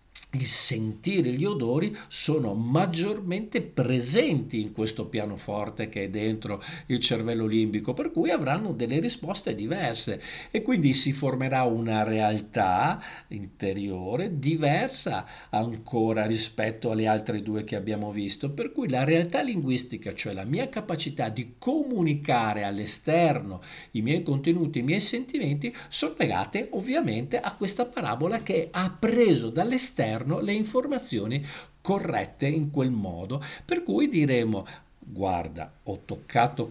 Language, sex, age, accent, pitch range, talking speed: Italian, male, 50-69, native, 105-155 Hz, 130 wpm